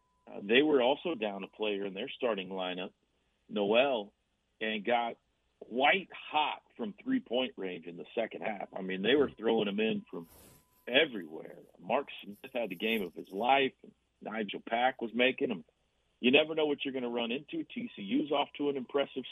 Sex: male